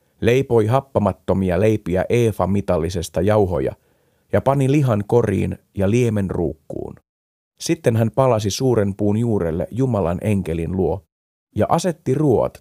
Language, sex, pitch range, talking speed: Finnish, male, 90-120 Hz, 120 wpm